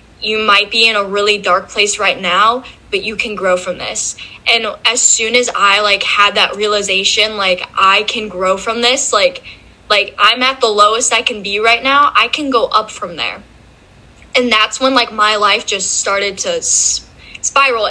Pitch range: 200-245 Hz